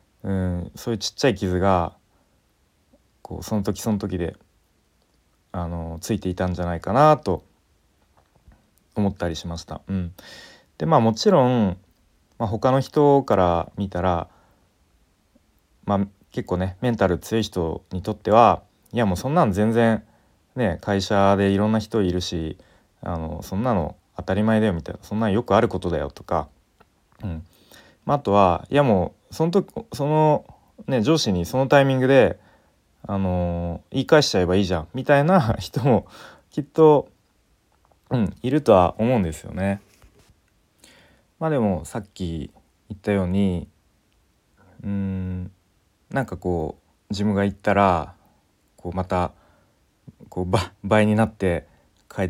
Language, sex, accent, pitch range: Japanese, male, native, 90-110 Hz